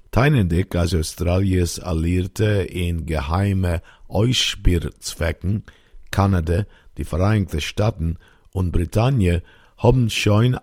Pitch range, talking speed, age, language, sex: 85-105 Hz, 85 wpm, 50-69, Hebrew, male